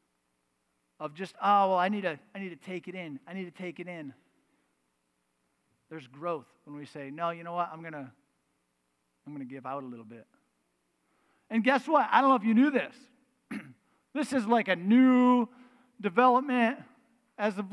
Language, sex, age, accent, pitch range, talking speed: English, male, 40-59, American, 175-255 Hz, 195 wpm